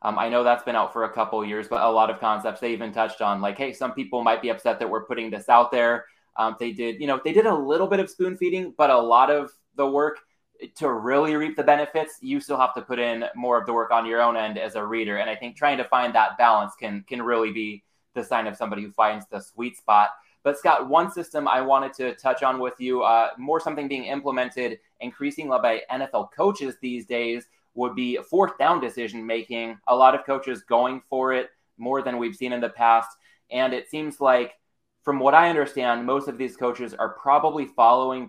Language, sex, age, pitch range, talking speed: English, male, 20-39, 115-135 Hz, 240 wpm